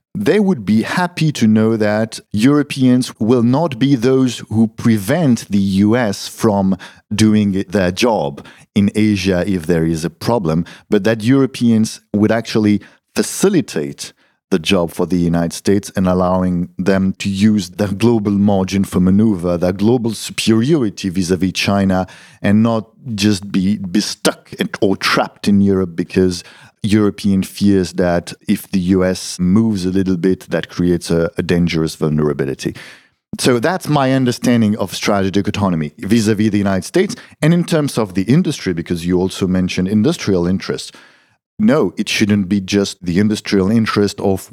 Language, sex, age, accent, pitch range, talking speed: Polish, male, 50-69, French, 90-110 Hz, 155 wpm